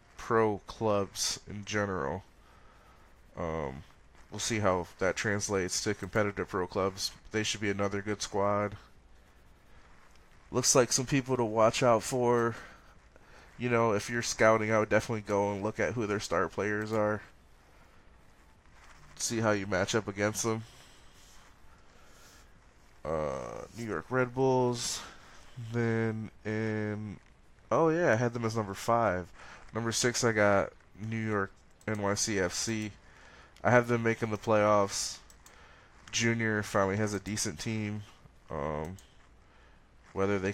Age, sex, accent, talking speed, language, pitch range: 20-39, male, American, 130 wpm, English, 95-110 Hz